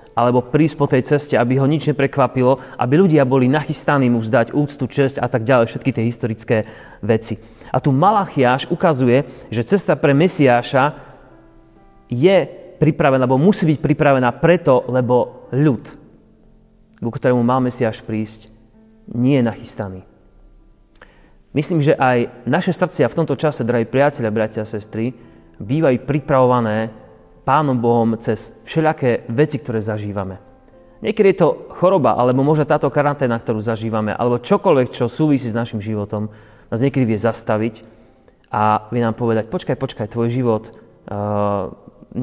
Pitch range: 110-140 Hz